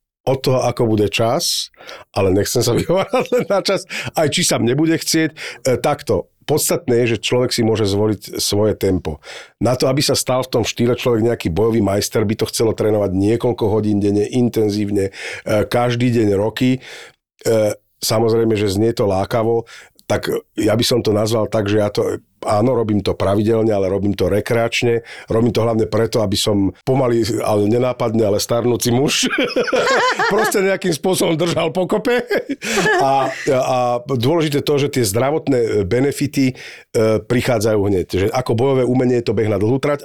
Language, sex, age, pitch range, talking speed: Slovak, male, 50-69, 110-135 Hz, 165 wpm